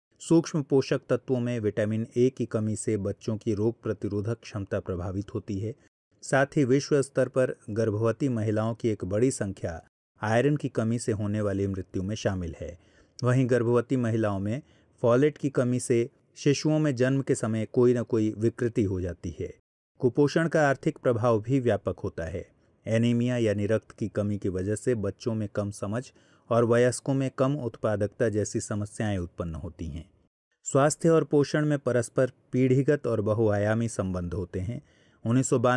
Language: Hindi